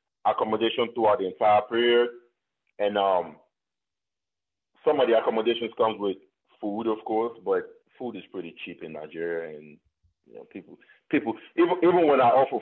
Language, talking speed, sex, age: English, 155 wpm, male, 30-49